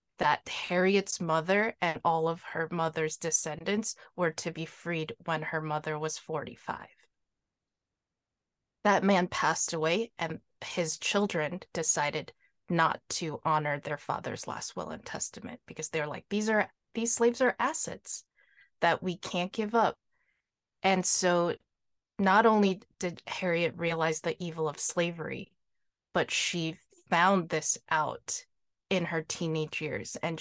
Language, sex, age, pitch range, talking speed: English, female, 20-39, 160-190 Hz, 140 wpm